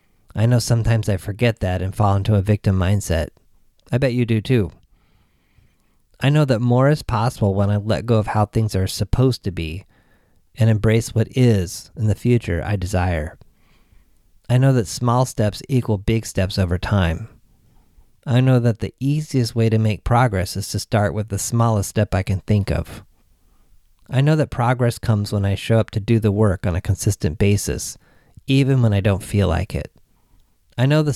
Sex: male